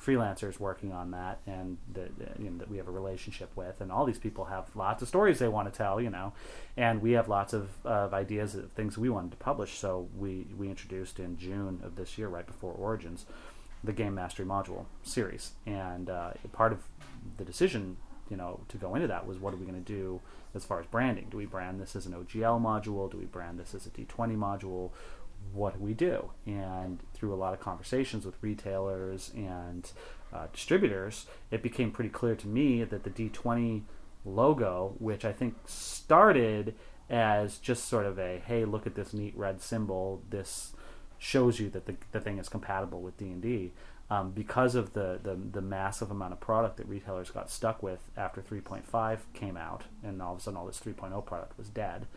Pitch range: 95-110 Hz